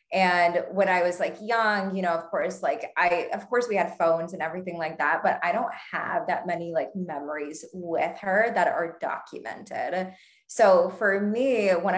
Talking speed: 190 wpm